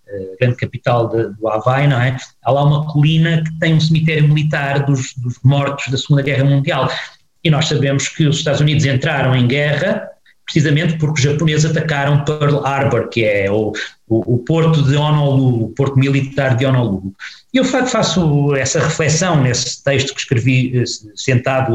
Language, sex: Portuguese, male